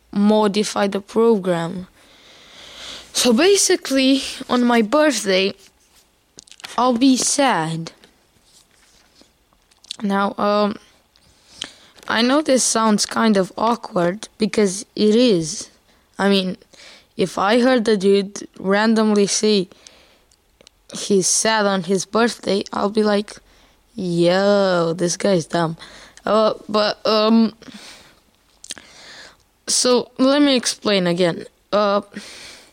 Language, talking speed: Romanian, 95 wpm